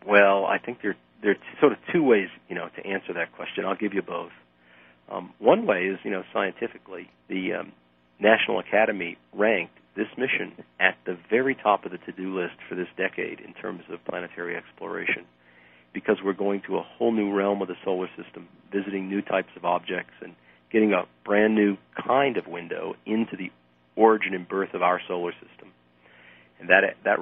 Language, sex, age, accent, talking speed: English, male, 40-59, American, 190 wpm